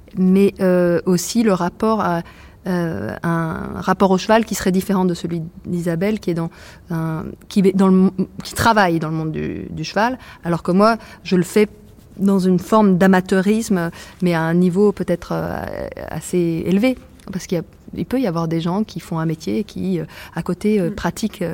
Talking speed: 195 wpm